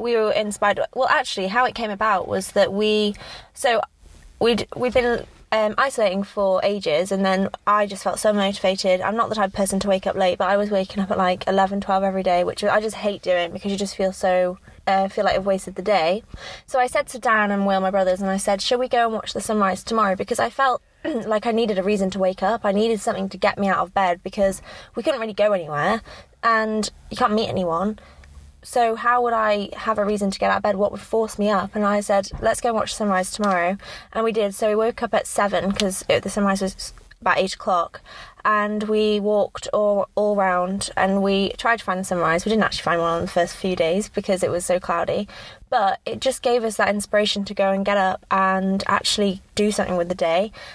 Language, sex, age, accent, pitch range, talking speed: English, female, 20-39, British, 190-215 Hz, 240 wpm